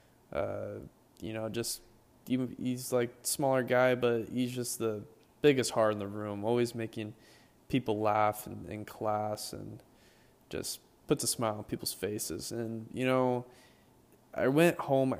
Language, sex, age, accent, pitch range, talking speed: English, male, 20-39, American, 110-125 Hz, 160 wpm